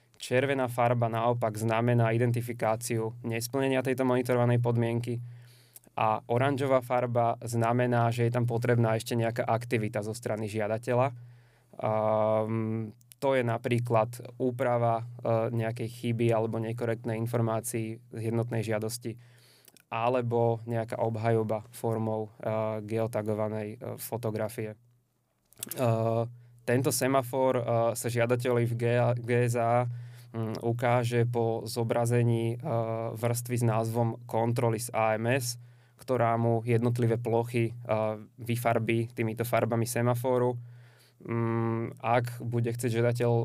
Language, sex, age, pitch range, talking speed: Slovak, male, 20-39, 115-120 Hz, 95 wpm